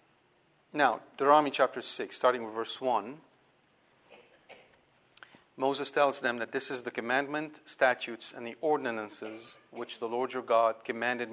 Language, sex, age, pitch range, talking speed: English, male, 40-59, 125-180 Hz, 140 wpm